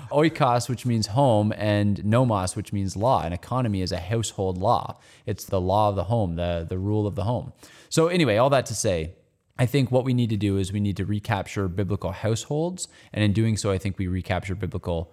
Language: English